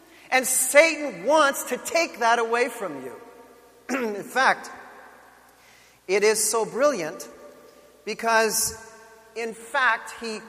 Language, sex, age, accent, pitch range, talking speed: English, male, 40-59, American, 210-270 Hz, 110 wpm